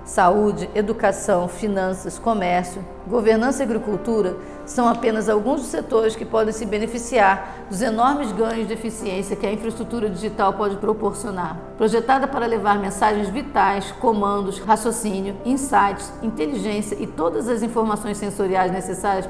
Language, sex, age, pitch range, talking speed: Portuguese, female, 50-69, 195-225 Hz, 130 wpm